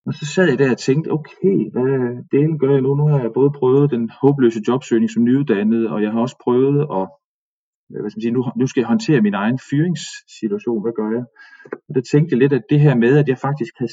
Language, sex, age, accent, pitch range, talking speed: Danish, male, 30-49, native, 115-160 Hz, 240 wpm